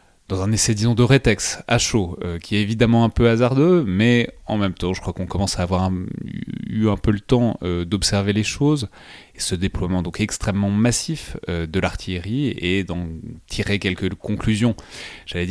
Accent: French